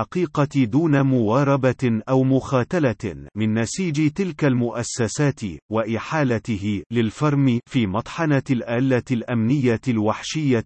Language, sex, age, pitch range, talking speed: Arabic, male, 40-59, 115-145 Hz, 85 wpm